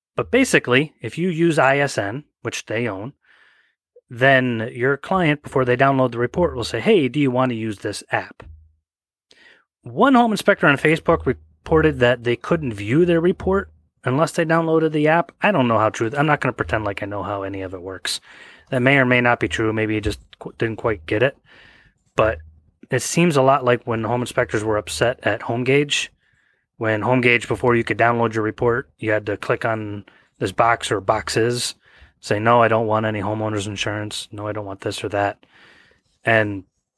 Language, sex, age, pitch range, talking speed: English, male, 30-49, 110-135 Hz, 200 wpm